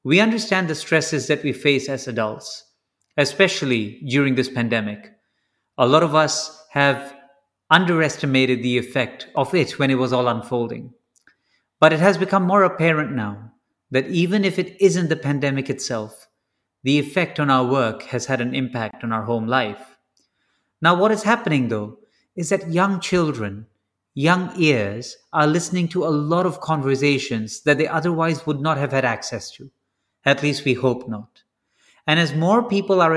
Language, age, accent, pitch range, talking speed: English, 30-49, Indian, 125-160 Hz, 170 wpm